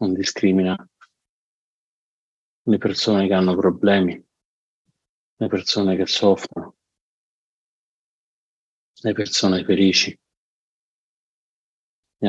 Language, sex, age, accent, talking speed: Italian, male, 50-69, native, 75 wpm